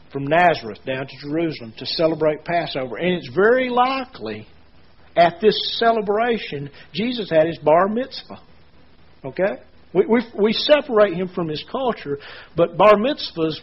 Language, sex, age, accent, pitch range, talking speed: English, male, 50-69, American, 145-195 Hz, 140 wpm